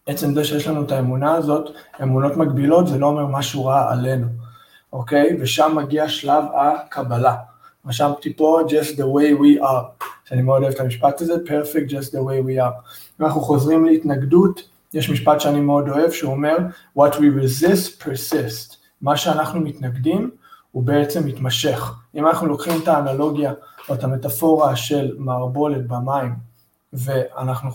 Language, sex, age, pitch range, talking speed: Hebrew, male, 20-39, 135-160 Hz, 155 wpm